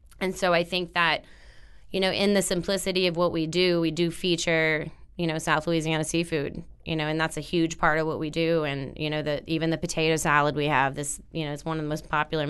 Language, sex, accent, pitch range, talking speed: English, female, American, 155-185 Hz, 250 wpm